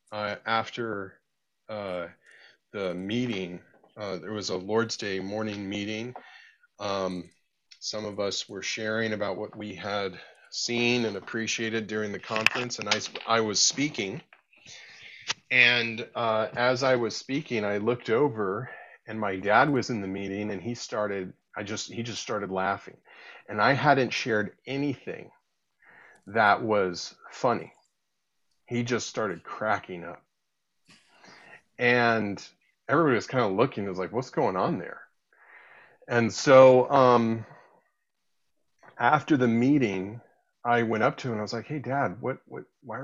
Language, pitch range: English, 105-125 Hz